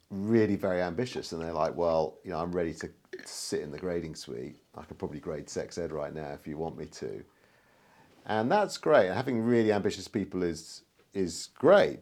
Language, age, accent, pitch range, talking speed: English, 50-69, British, 80-100 Hz, 205 wpm